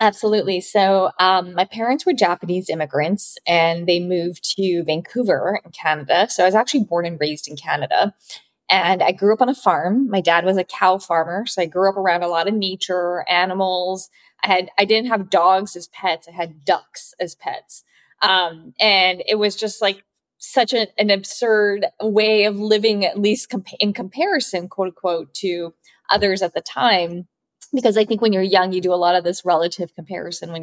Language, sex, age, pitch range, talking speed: English, female, 20-39, 175-205 Hz, 195 wpm